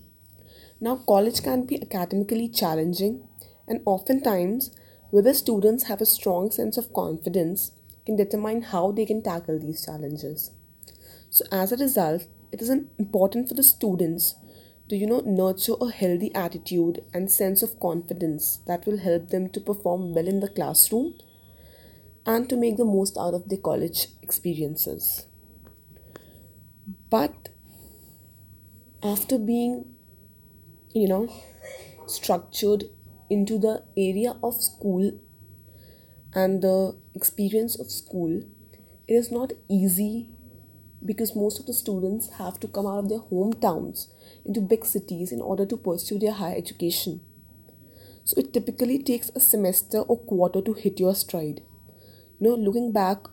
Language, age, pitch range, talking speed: English, 20-39, 170-220 Hz, 140 wpm